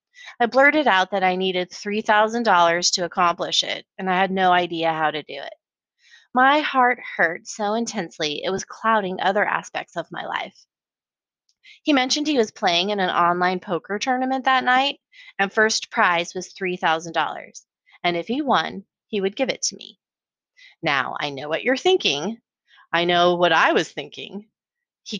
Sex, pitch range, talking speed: female, 175-245 Hz, 170 wpm